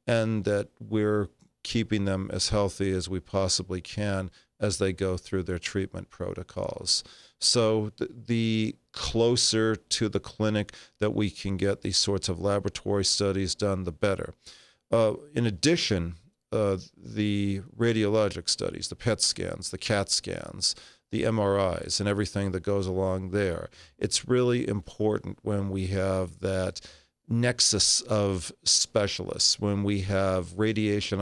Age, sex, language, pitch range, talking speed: 40-59, male, English, 95-110 Hz, 135 wpm